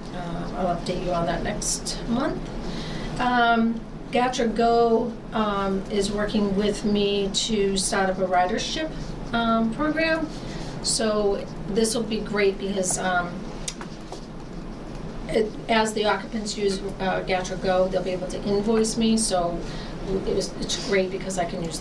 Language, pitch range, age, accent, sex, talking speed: English, 185-225 Hz, 40-59, American, female, 145 wpm